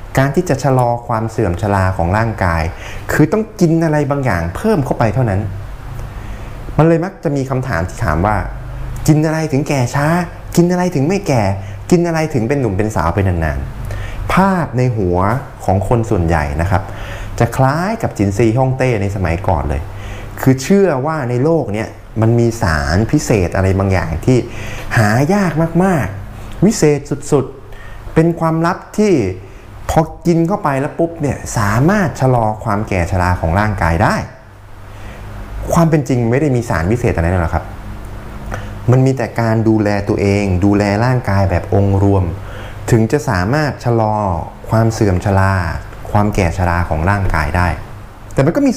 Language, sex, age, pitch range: Thai, male, 20-39, 100-135 Hz